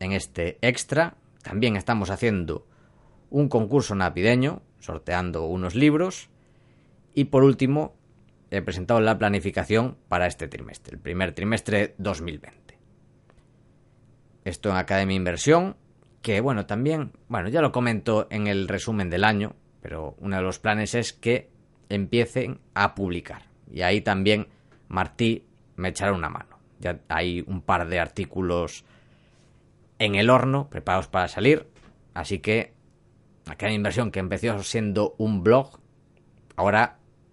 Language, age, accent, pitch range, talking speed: Spanish, 30-49, Spanish, 90-120 Hz, 135 wpm